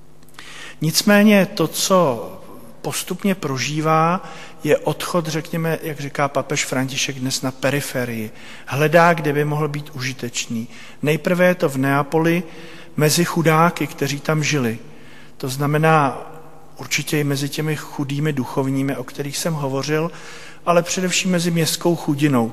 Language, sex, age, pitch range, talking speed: Slovak, male, 40-59, 130-160 Hz, 130 wpm